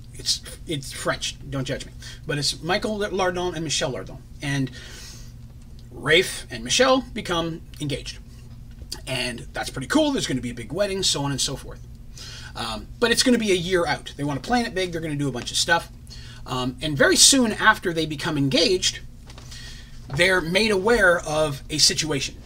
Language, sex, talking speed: English, male, 190 wpm